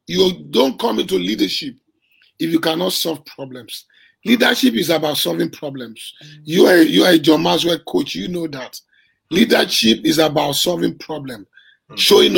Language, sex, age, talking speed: English, male, 50-69, 155 wpm